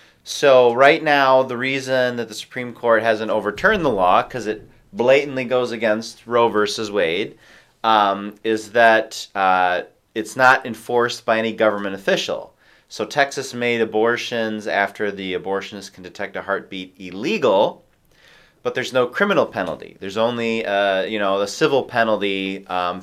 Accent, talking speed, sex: American, 150 wpm, male